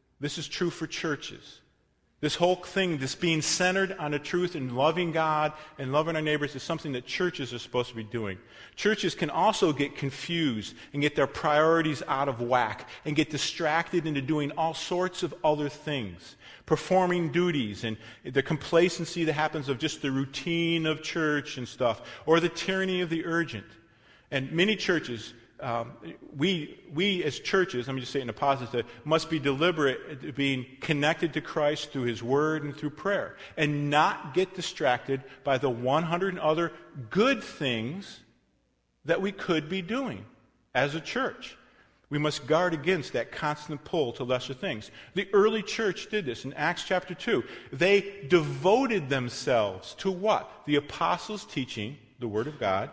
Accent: American